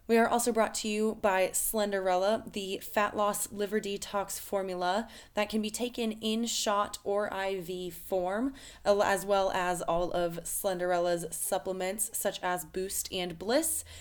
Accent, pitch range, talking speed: American, 180-215 Hz, 150 wpm